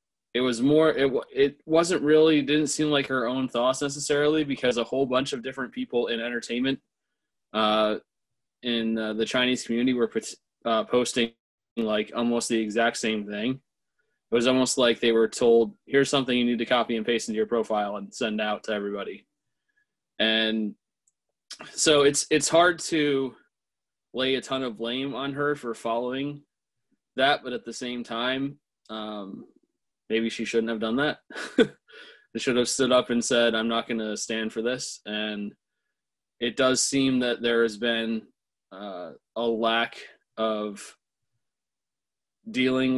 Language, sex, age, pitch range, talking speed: English, male, 20-39, 110-135 Hz, 160 wpm